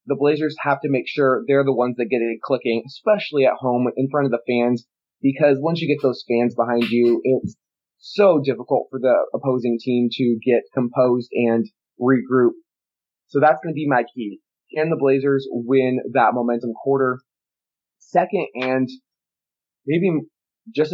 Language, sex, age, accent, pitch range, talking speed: English, male, 20-39, American, 120-140 Hz, 170 wpm